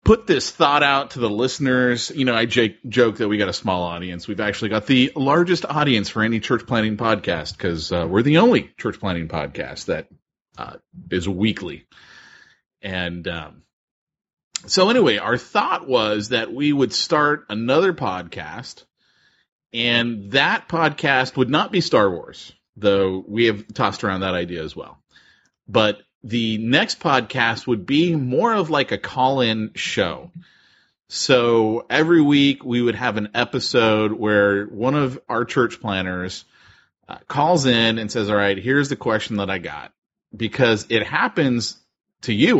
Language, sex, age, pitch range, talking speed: English, male, 30-49, 95-130 Hz, 160 wpm